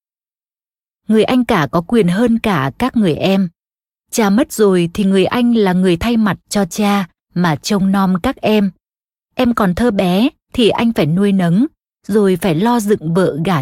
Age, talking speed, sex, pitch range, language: 20-39, 185 wpm, female, 175-225 Hz, Vietnamese